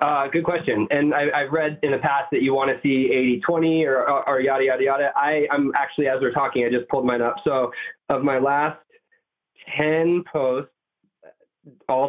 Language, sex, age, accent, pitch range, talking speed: English, male, 20-39, American, 130-160 Hz, 200 wpm